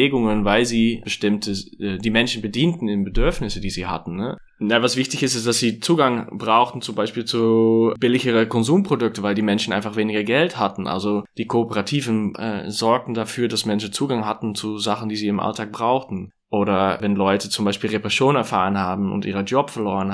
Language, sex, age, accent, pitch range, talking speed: German, male, 20-39, German, 105-115 Hz, 190 wpm